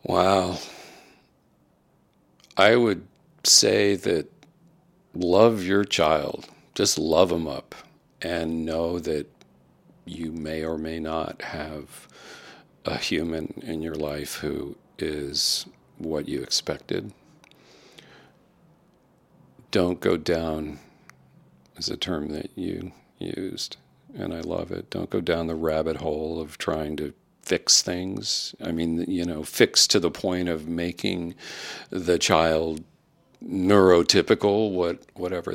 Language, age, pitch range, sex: English, 50-69, 80-105 Hz, male